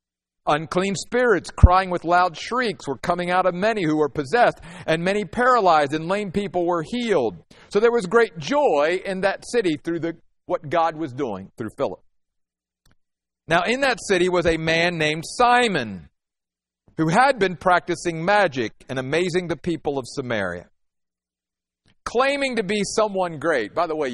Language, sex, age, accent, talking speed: English, male, 50-69, American, 165 wpm